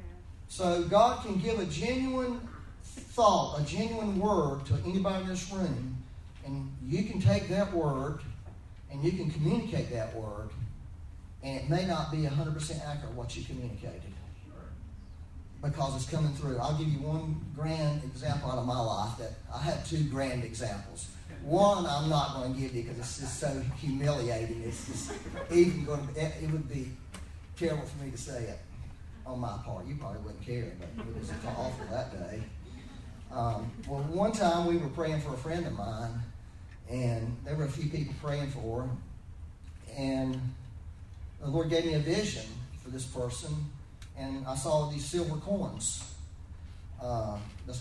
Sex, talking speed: male, 170 wpm